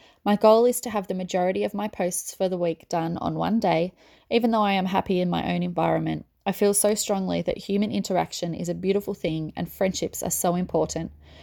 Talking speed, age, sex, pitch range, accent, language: 220 wpm, 20-39, female, 170-205 Hz, Australian, English